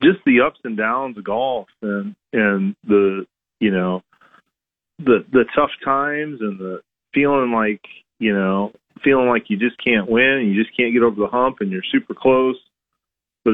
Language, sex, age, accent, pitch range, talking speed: English, male, 40-59, American, 105-125 Hz, 180 wpm